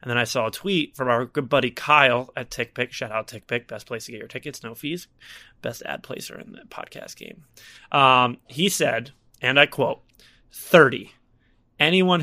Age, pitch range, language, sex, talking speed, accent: 30-49, 125-160 Hz, English, male, 190 wpm, American